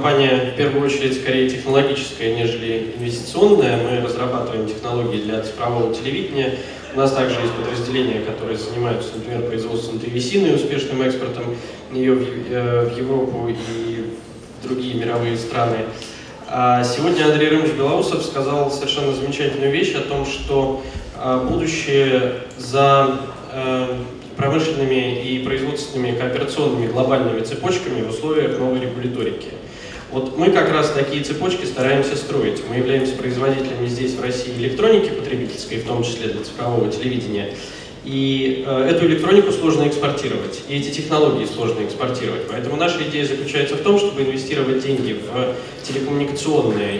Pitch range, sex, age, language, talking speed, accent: 120-140 Hz, male, 20-39, Russian, 125 wpm, native